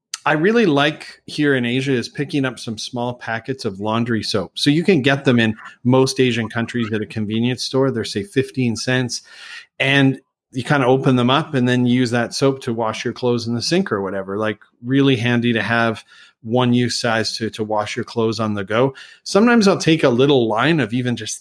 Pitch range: 110-135 Hz